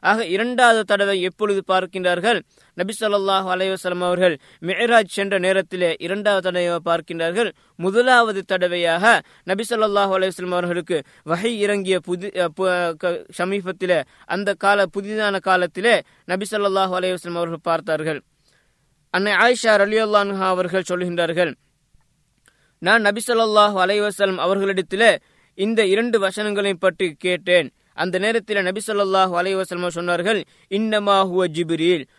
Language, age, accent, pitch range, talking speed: Tamil, 20-39, native, 180-210 Hz, 105 wpm